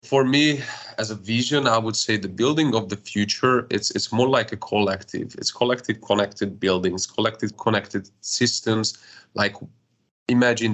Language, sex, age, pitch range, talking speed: English, male, 30-49, 100-120 Hz, 155 wpm